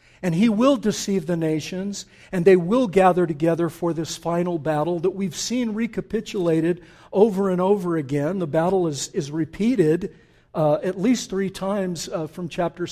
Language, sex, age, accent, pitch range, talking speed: English, male, 50-69, American, 135-185 Hz, 165 wpm